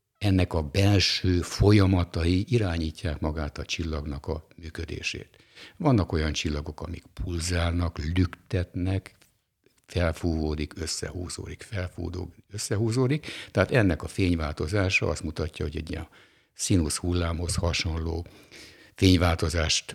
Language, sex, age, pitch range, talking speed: Hungarian, male, 60-79, 80-95 Hz, 100 wpm